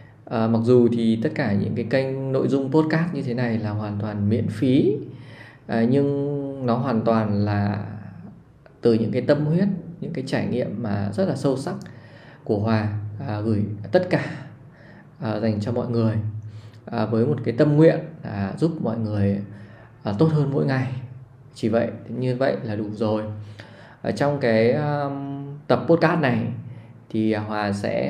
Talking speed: 160 wpm